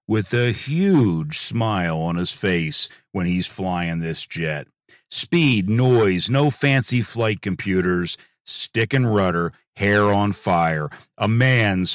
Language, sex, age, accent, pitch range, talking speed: English, male, 50-69, American, 90-120 Hz, 130 wpm